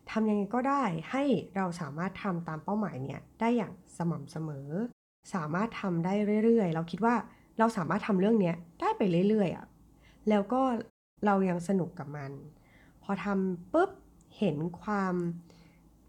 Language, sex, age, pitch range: Thai, female, 20-39, 165-215 Hz